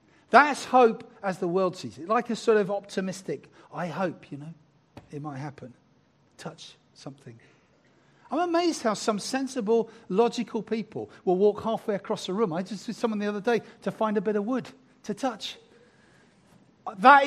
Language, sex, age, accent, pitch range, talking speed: English, male, 50-69, British, 150-215 Hz, 175 wpm